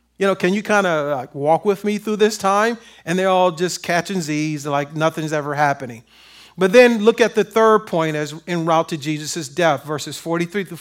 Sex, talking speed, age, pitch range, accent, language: male, 210 wpm, 40-59, 155-200 Hz, American, English